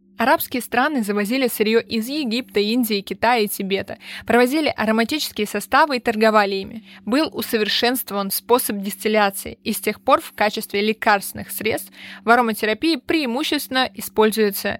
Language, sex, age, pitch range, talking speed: Russian, female, 20-39, 200-235 Hz, 130 wpm